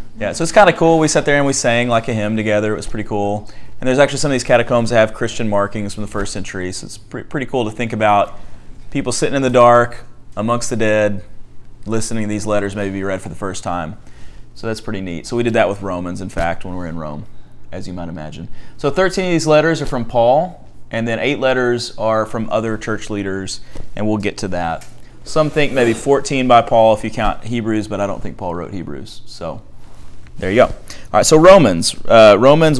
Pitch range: 100-125 Hz